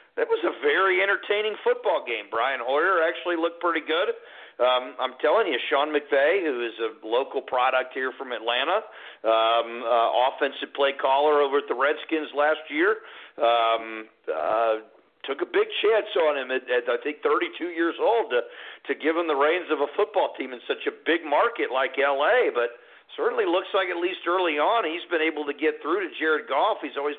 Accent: American